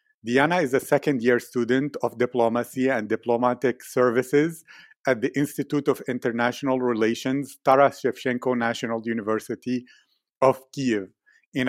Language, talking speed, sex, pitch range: English, 120 wpm, male, 120-135 Hz